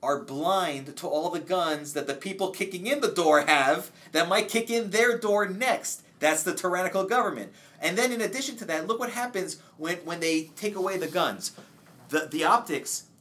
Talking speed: 200 wpm